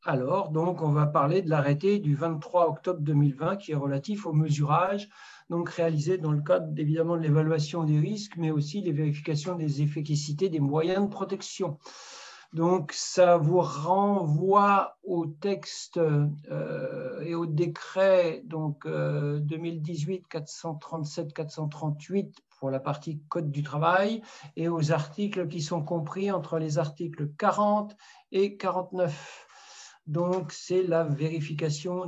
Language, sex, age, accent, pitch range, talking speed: French, male, 60-79, French, 155-185 Hz, 135 wpm